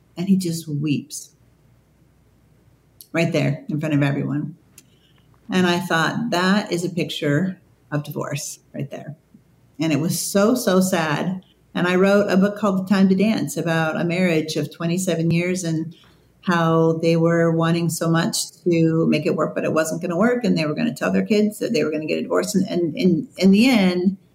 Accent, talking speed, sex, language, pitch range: American, 190 wpm, female, English, 155-185 Hz